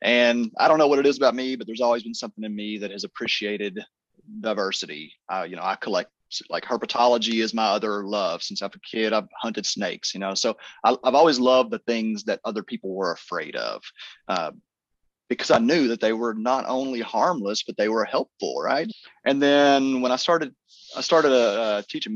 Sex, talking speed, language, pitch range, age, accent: male, 210 wpm, English, 100-125 Hz, 30-49, American